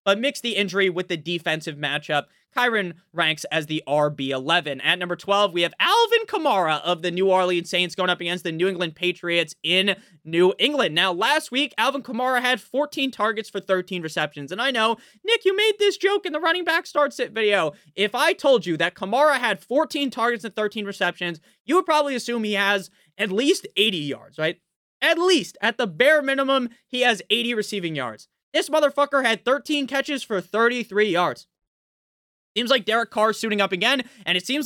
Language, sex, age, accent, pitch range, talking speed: English, male, 20-39, American, 175-265 Hz, 195 wpm